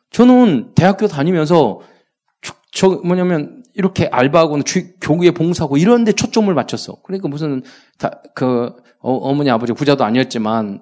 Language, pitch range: Korean, 125-210 Hz